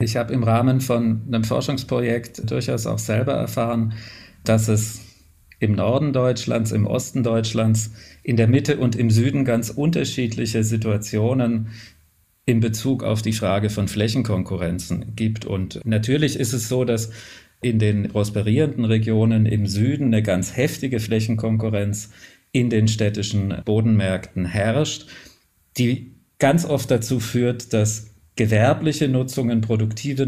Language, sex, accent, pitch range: German, male, German, 110-130 Hz